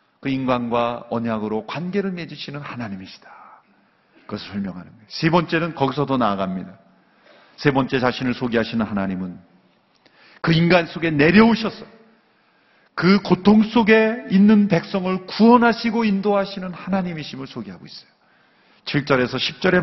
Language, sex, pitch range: Korean, male, 125-170 Hz